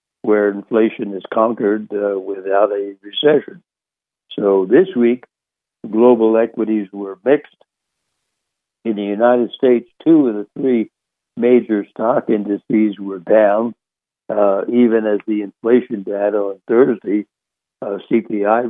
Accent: American